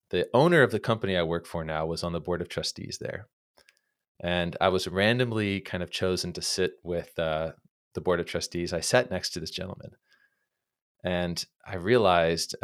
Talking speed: 190 wpm